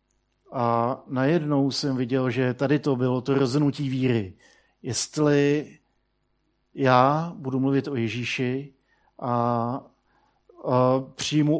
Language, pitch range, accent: Czech, 125-140 Hz, native